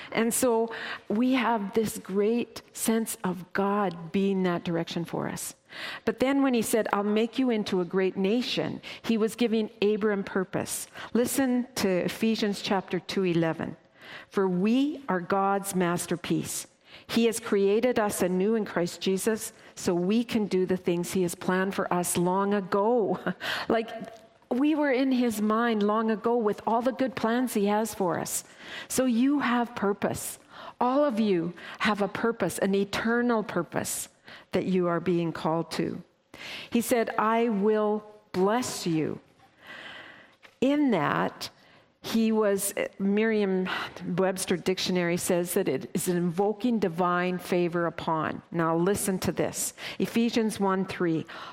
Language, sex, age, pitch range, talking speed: English, female, 50-69, 185-230 Hz, 150 wpm